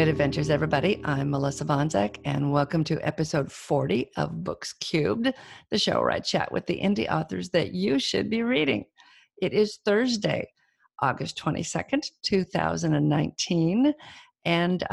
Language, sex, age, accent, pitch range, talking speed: English, female, 50-69, American, 160-215 Hz, 140 wpm